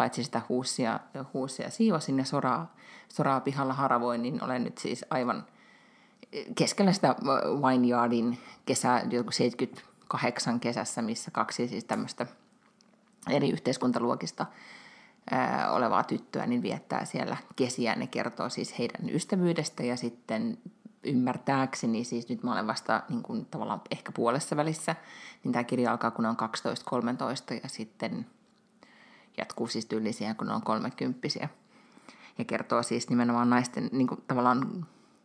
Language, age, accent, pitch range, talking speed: Finnish, 30-49, native, 125-180 Hz, 130 wpm